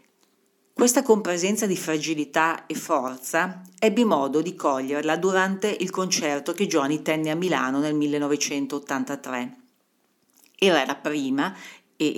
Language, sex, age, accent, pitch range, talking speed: Italian, female, 40-59, native, 140-185 Hz, 120 wpm